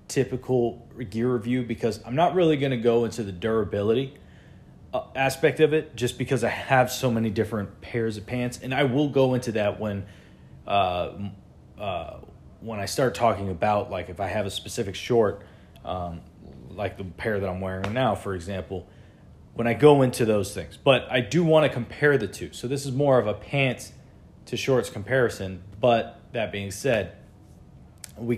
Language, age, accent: English, 30-49, American